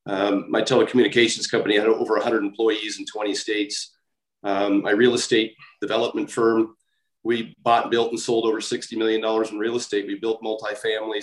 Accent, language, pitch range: American, English, 115-155 Hz